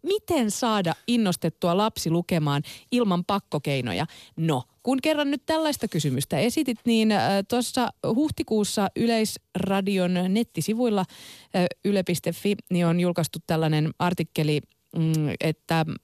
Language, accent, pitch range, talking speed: Finnish, native, 160-230 Hz, 95 wpm